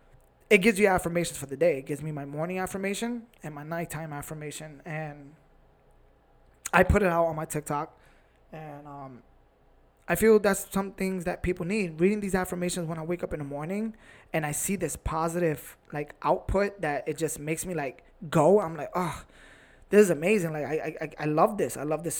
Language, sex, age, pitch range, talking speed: English, male, 20-39, 155-185 Hz, 200 wpm